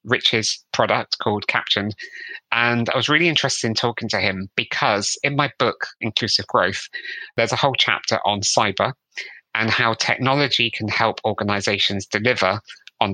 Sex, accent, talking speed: male, British, 150 wpm